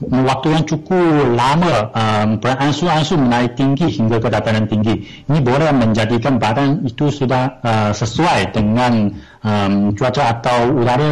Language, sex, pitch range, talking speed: Malay, male, 115-150 Hz, 135 wpm